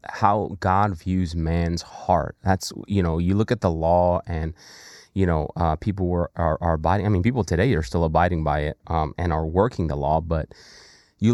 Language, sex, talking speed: English, male, 205 wpm